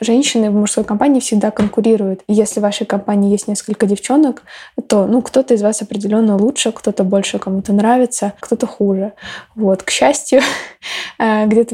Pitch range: 210-235 Hz